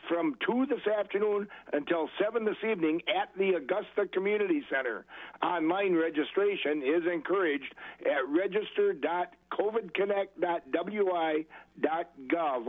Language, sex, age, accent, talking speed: English, male, 60-79, American, 90 wpm